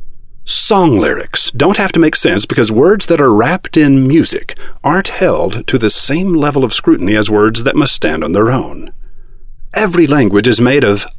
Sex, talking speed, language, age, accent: male, 190 wpm, English, 50-69, American